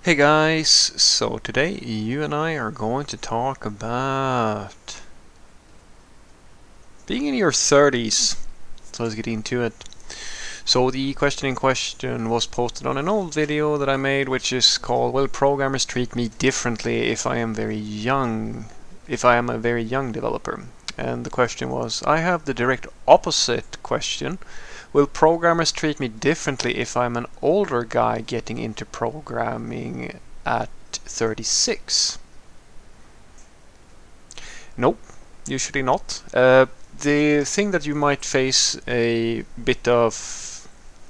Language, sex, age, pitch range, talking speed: English, male, 30-49, 115-140 Hz, 135 wpm